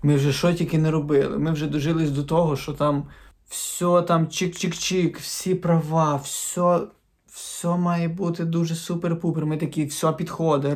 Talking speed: 155 wpm